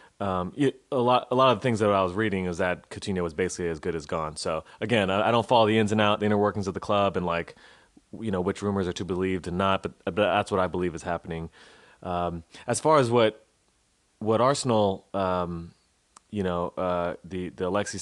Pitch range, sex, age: 90-105 Hz, male, 30-49